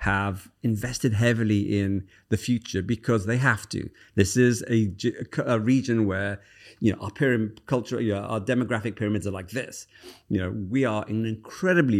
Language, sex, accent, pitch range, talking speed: English, male, British, 100-125 Hz, 155 wpm